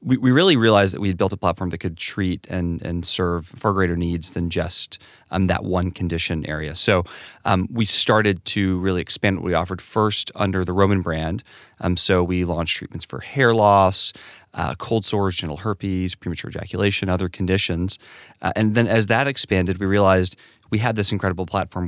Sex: male